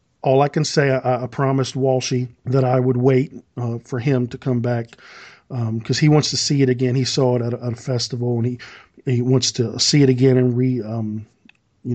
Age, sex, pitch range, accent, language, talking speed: 40-59, male, 120-140 Hz, American, English, 230 wpm